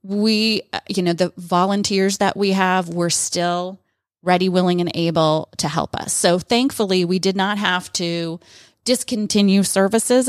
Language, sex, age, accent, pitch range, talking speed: English, female, 30-49, American, 180-210 Hz, 150 wpm